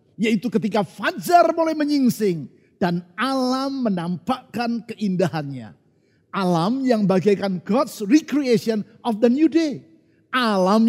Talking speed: 105 wpm